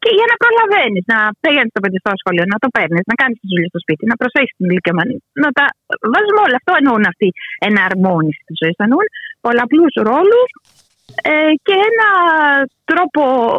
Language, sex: Greek, female